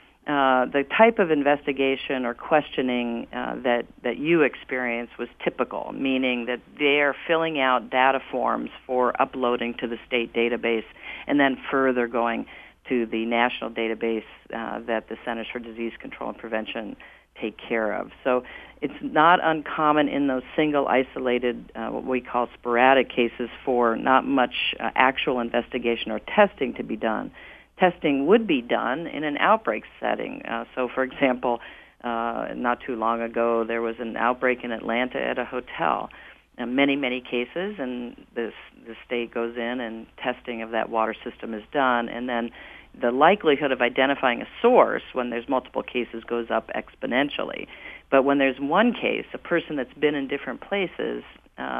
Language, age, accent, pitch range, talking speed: English, 50-69, American, 115-135 Hz, 170 wpm